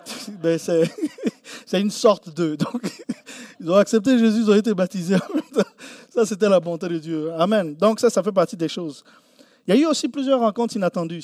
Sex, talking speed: male, 185 wpm